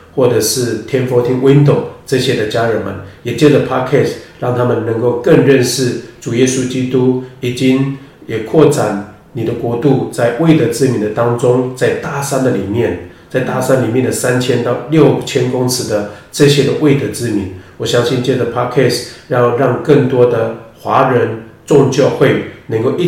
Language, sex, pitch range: Chinese, male, 115-135 Hz